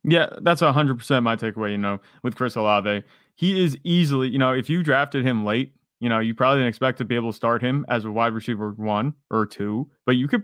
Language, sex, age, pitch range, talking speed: English, male, 30-49, 110-145 Hz, 240 wpm